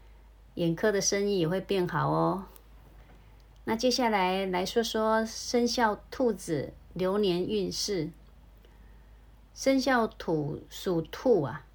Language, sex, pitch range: Chinese, female, 150-205 Hz